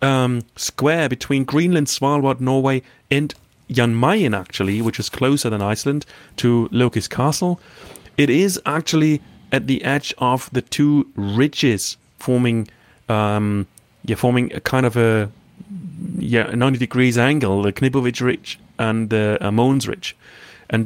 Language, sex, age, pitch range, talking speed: English, male, 30-49, 110-140 Hz, 140 wpm